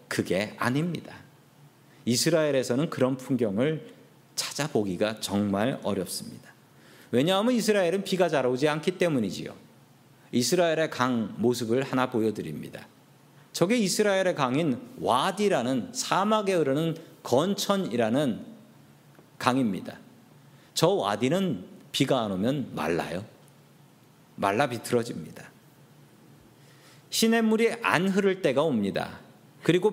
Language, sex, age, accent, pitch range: Korean, male, 40-59, native, 130-190 Hz